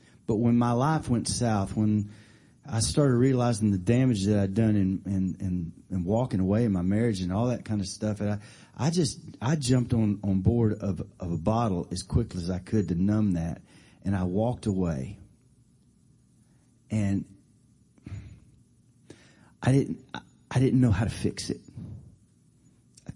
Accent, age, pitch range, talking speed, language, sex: American, 30-49, 100-125 Hz, 175 wpm, English, male